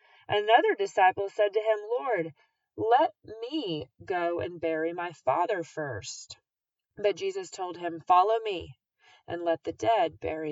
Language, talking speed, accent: English, 145 wpm, American